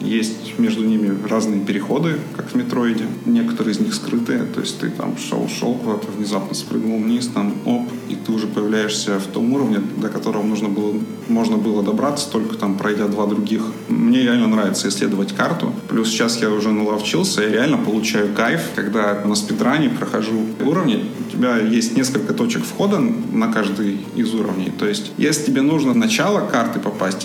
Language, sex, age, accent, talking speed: Russian, male, 20-39, native, 170 wpm